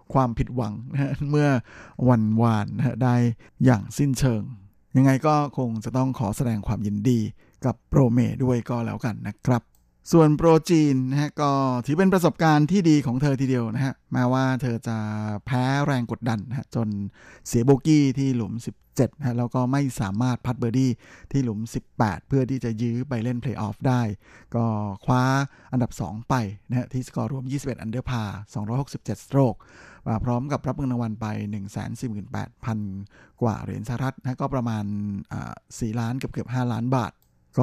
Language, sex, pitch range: Thai, male, 110-135 Hz